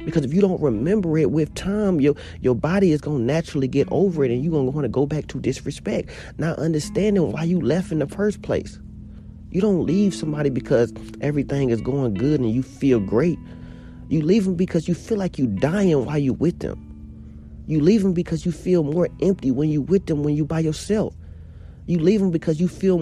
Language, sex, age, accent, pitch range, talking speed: English, male, 40-59, American, 140-185 Hz, 220 wpm